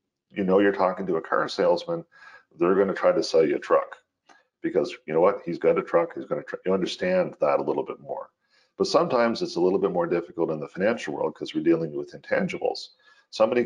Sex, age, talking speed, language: male, 40-59, 235 wpm, English